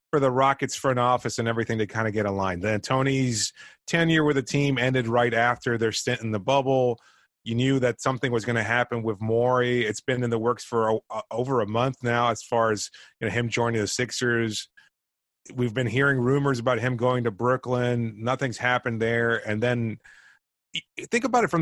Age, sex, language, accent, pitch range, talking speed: 30-49, male, English, American, 115-140 Hz, 205 wpm